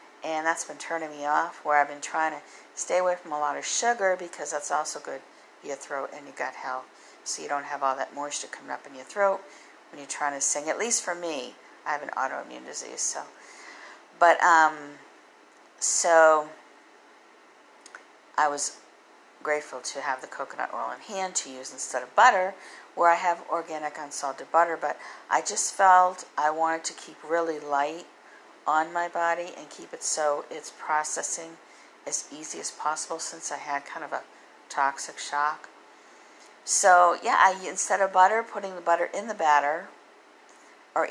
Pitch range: 145-175 Hz